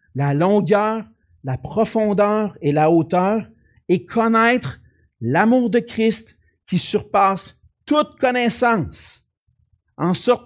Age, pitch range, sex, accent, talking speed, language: 50-69, 145-210 Hz, male, Canadian, 105 wpm, French